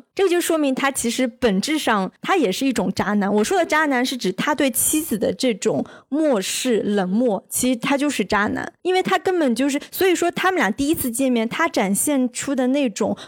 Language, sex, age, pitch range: Chinese, female, 20-39, 215-285 Hz